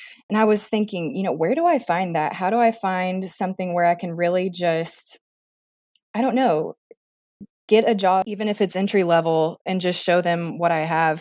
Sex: female